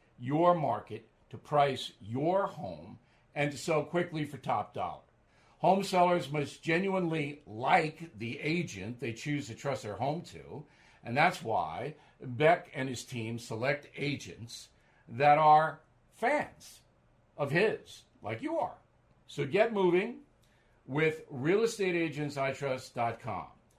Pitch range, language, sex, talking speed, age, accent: 120-155 Hz, English, male, 125 wpm, 50-69, American